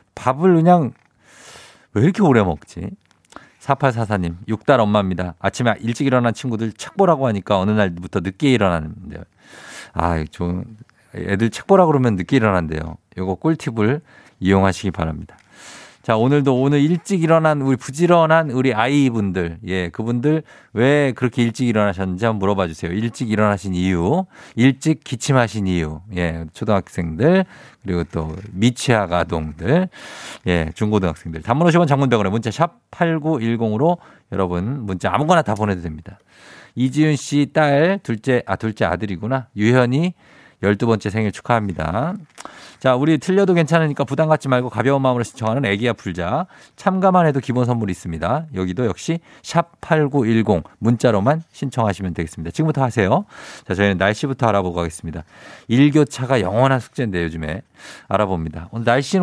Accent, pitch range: native, 95-145 Hz